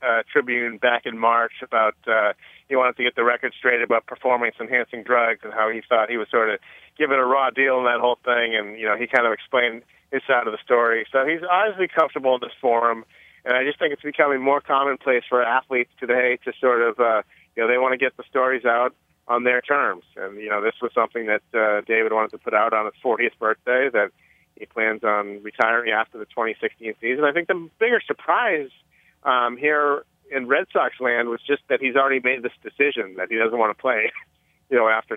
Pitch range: 115-135 Hz